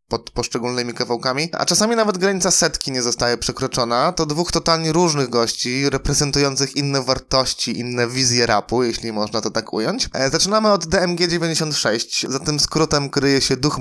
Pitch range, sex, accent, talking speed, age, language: 125-155 Hz, male, native, 155 wpm, 20-39, Polish